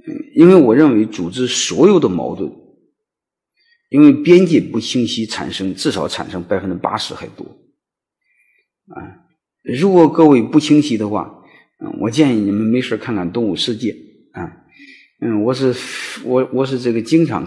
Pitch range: 110-180 Hz